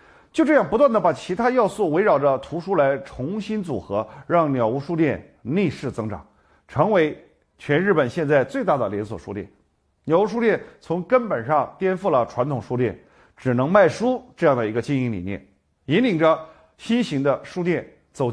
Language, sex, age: Chinese, male, 50-69